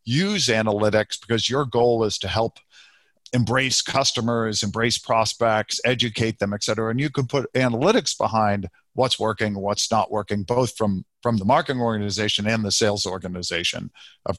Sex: male